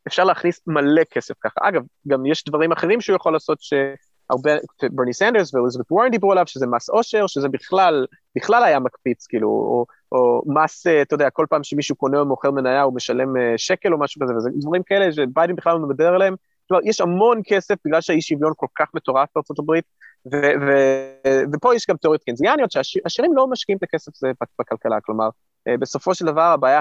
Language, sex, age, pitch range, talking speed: Hebrew, male, 20-39, 140-190 Hz, 180 wpm